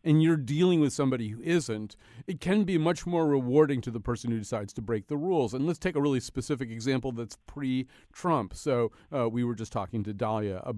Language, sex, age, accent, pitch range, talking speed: English, male, 40-59, American, 115-155 Hz, 215 wpm